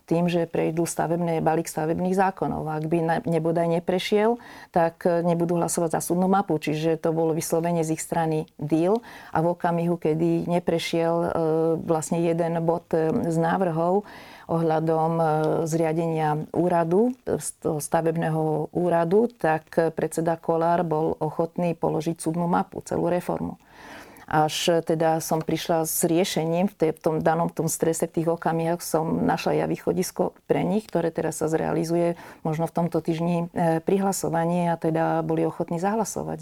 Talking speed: 140 wpm